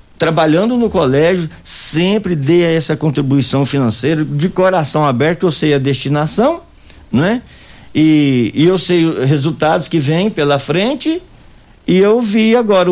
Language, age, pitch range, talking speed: Portuguese, 60-79, 125-190 Hz, 140 wpm